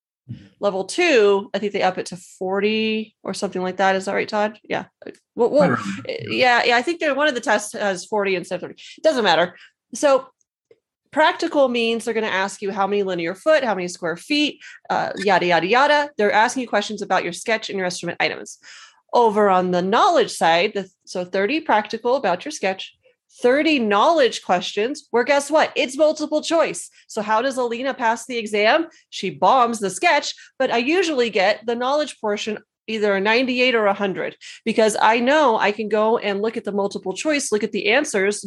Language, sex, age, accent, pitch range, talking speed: English, female, 30-49, American, 200-280 Hz, 200 wpm